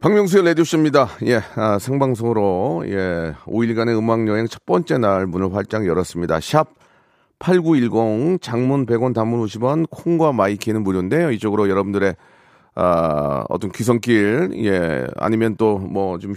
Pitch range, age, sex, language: 110-135 Hz, 40-59, male, Korean